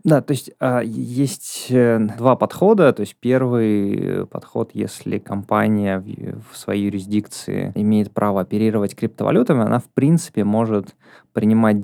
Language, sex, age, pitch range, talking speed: Russian, male, 20-39, 100-125 Hz, 120 wpm